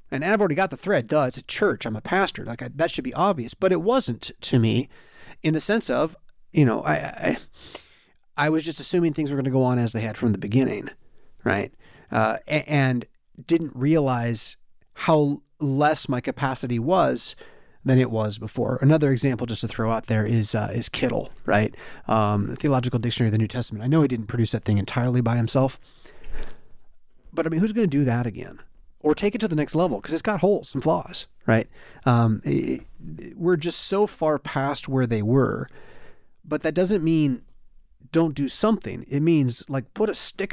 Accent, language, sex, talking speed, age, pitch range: American, English, male, 205 wpm, 30-49, 120-170 Hz